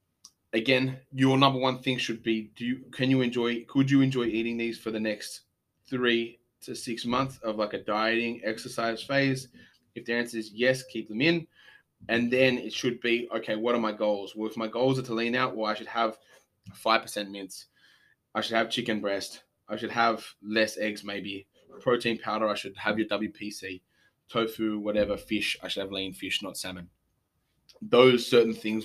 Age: 20-39